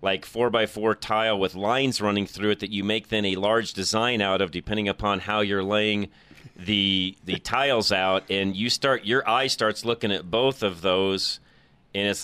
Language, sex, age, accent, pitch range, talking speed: English, male, 40-59, American, 95-115 Hz, 200 wpm